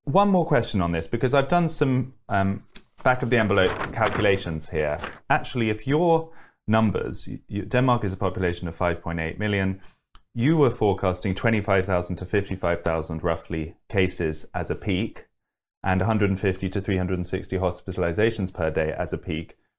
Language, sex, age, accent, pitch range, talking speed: English, male, 20-39, British, 90-115 Hz, 150 wpm